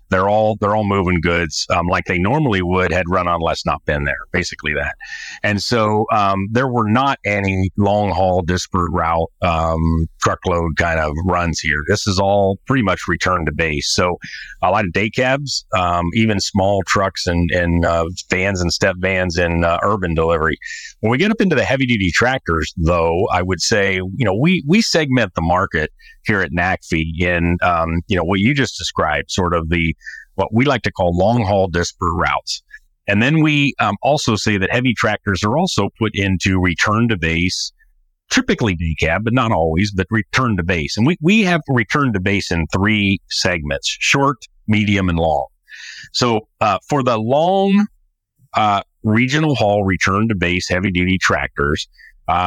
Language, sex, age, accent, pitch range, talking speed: English, male, 40-59, American, 85-110 Hz, 185 wpm